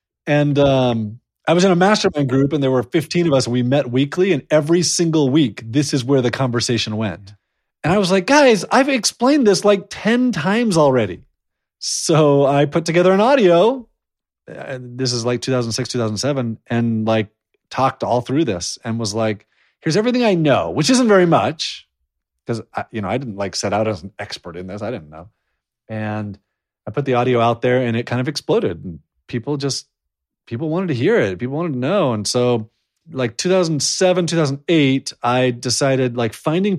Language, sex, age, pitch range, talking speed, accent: English, male, 30-49, 115-175 Hz, 190 wpm, American